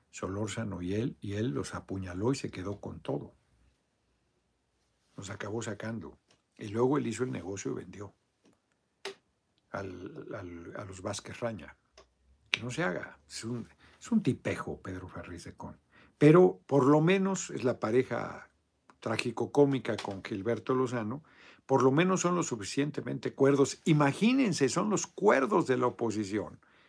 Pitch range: 100-130 Hz